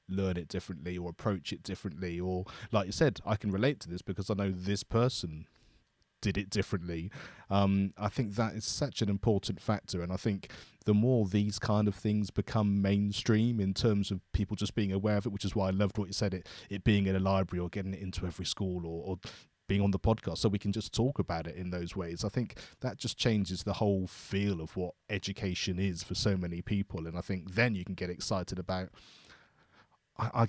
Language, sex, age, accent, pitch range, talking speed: English, male, 30-49, British, 90-105 Hz, 225 wpm